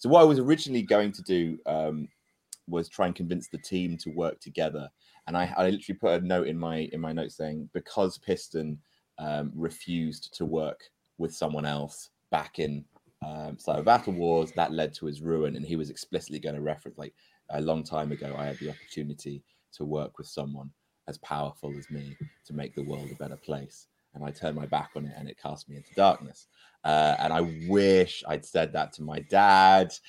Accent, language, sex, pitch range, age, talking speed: British, English, male, 75-90 Hz, 30-49, 210 wpm